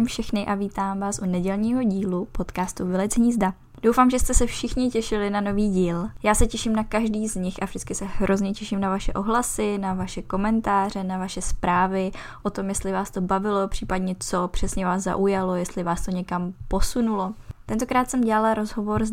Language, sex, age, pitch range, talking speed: Czech, female, 10-29, 185-215 Hz, 190 wpm